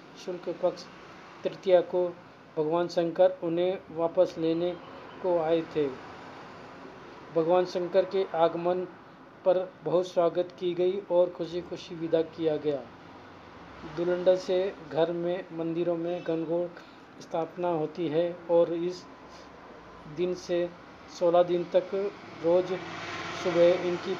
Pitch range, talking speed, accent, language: 165-180 Hz, 115 wpm, native, Hindi